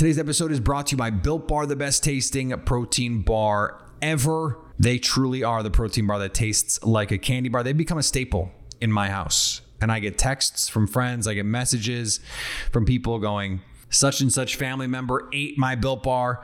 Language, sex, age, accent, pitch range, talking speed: English, male, 30-49, American, 105-130 Hz, 200 wpm